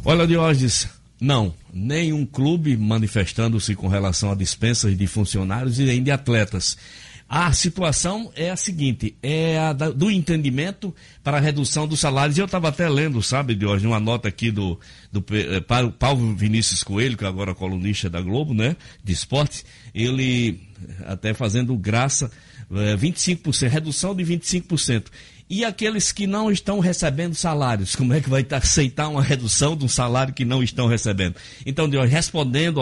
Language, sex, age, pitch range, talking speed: Portuguese, male, 60-79, 105-145 Hz, 160 wpm